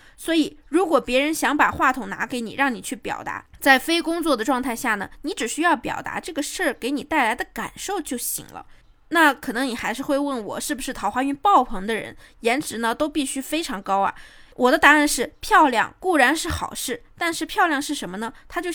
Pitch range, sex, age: 235-310 Hz, female, 20-39